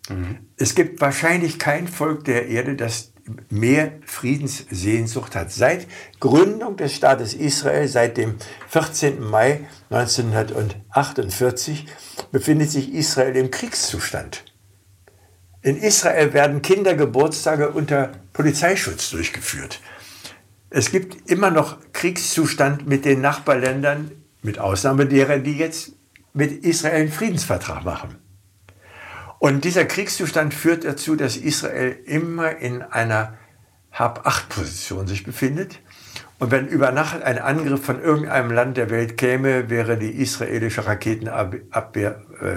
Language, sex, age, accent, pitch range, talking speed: German, male, 60-79, German, 105-150 Hz, 115 wpm